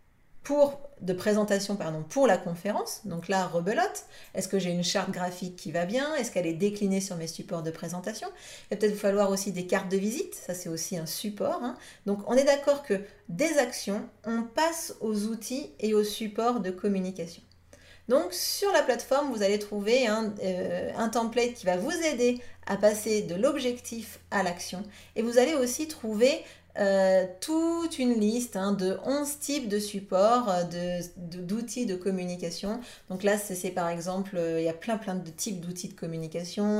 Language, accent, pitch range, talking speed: French, French, 180-235 Hz, 190 wpm